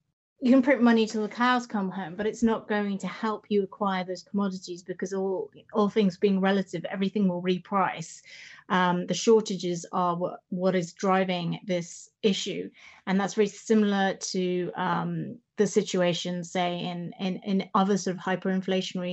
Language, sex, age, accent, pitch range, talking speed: English, female, 30-49, British, 180-210 Hz, 170 wpm